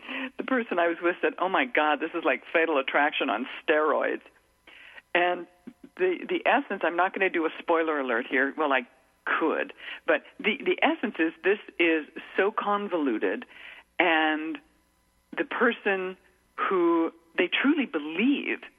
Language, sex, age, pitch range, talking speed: English, female, 50-69, 160-240 Hz, 155 wpm